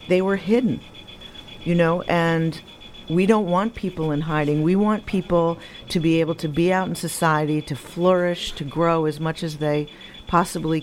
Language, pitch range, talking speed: English, 145-165 Hz, 175 wpm